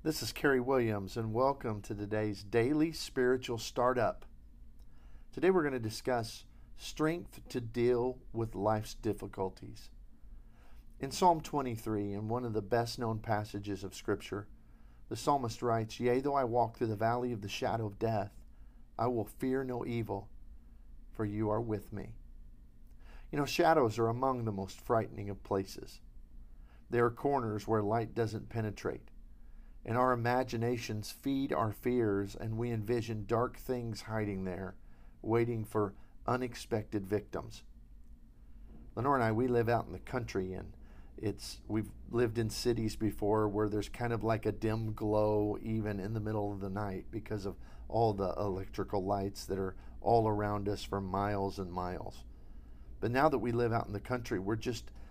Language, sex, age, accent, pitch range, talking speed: English, male, 50-69, American, 100-120 Hz, 160 wpm